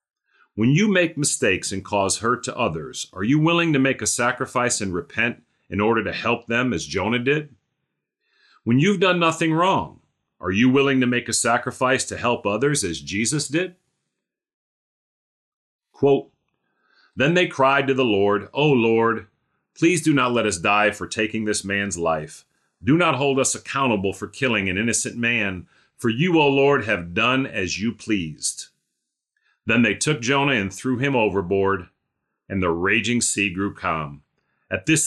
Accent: American